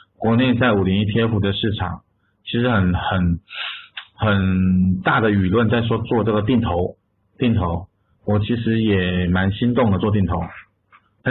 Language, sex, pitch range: Chinese, male, 95-115 Hz